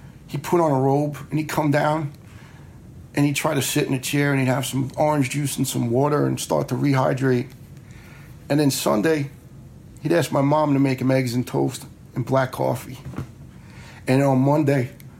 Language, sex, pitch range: English, male, 130-155 Hz